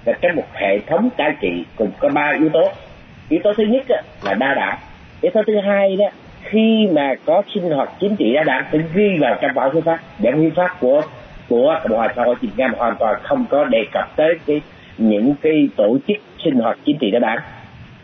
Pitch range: 140-215 Hz